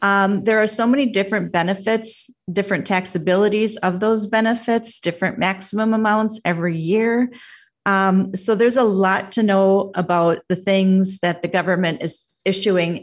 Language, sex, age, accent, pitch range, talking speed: English, female, 40-59, American, 185-225 Hz, 145 wpm